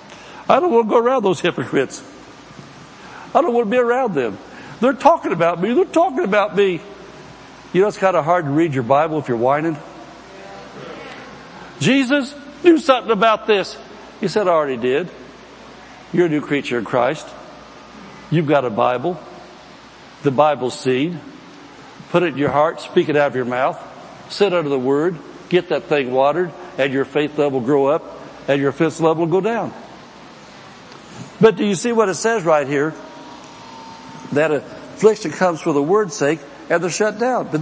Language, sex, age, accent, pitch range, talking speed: English, male, 60-79, American, 145-210 Hz, 175 wpm